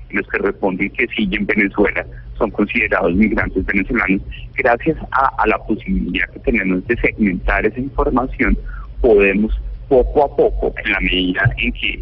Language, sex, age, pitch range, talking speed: Spanish, male, 50-69, 95-125 Hz, 150 wpm